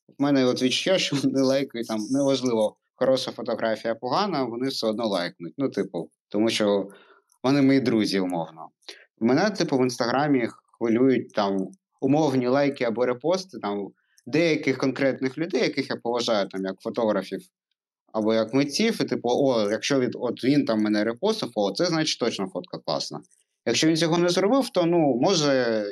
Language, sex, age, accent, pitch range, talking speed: Ukrainian, male, 30-49, native, 115-150 Hz, 160 wpm